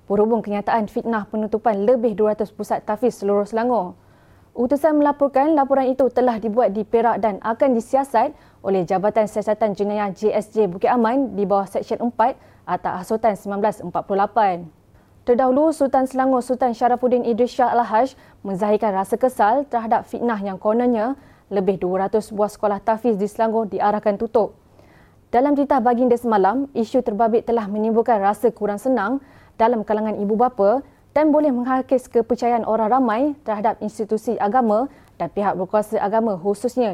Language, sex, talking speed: Malay, female, 145 wpm